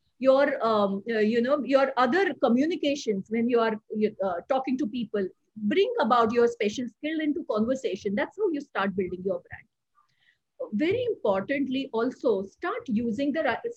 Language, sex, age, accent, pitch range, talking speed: Hindi, female, 50-69, native, 215-290 Hz, 155 wpm